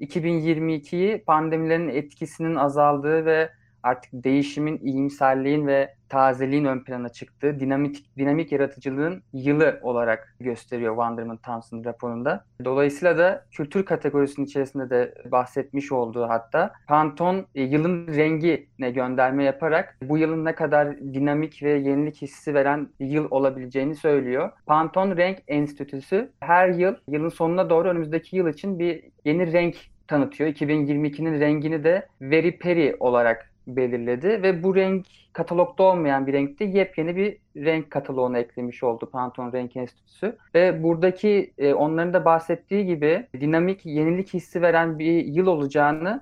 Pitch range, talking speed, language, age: 135-170 Hz, 130 wpm, Turkish, 30-49